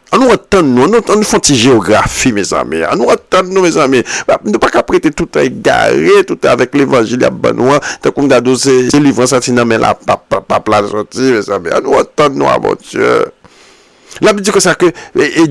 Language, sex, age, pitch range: French, male, 50-69, 100-140 Hz